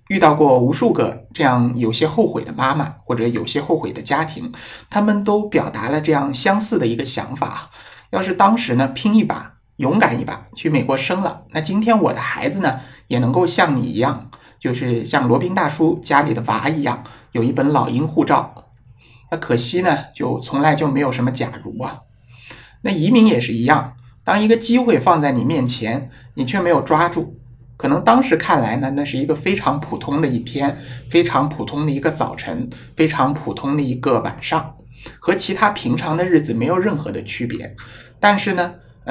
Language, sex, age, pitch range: Chinese, male, 60-79, 125-170 Hz